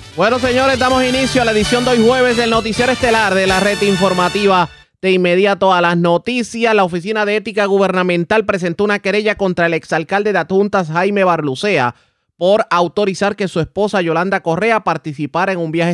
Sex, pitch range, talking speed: male, 160-215 Hz, 180 wpm